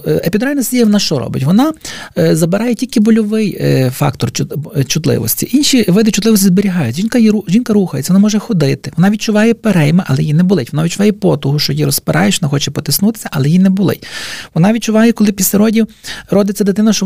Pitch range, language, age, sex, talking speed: 160-215 Hz, Ukrainian, 40-59, male, 175 wpm